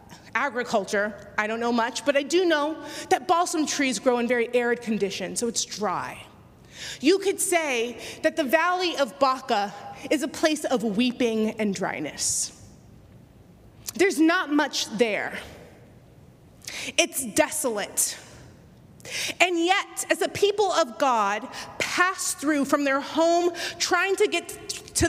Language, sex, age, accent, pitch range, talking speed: English, female, 30-49, American, 250-345 Hz, 135 wpm